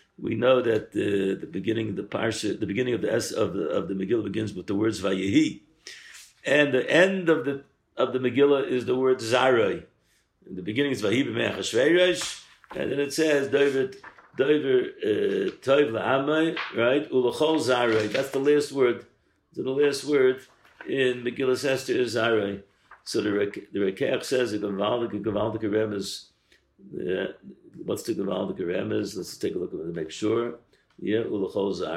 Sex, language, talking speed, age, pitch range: male, English, 165 wpm, 60-79, 110-145 Hz